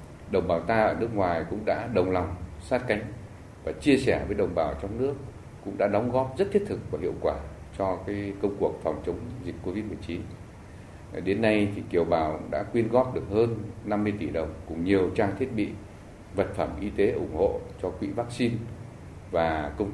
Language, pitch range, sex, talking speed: Vietnamese, 90-115 Hz, male, 200 wpm